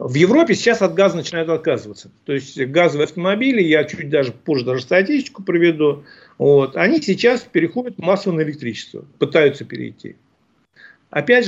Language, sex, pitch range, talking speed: Russian, male, 145-210 Hz, 145 wpm